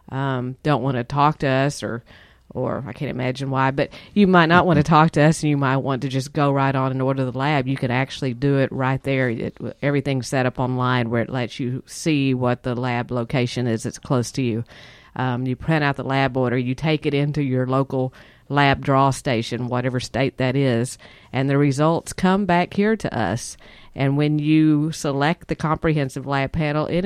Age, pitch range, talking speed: 50-69, 130-155 Hz, 215 wpm